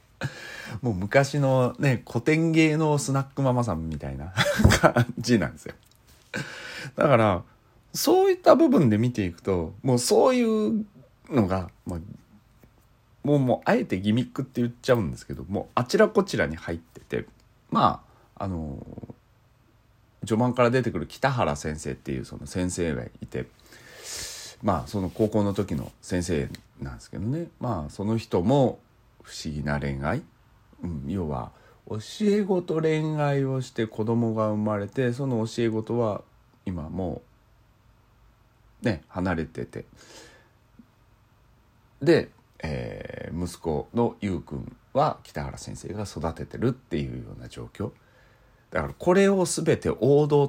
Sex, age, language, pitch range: male, 40-59, Japanese, 100-130 Hz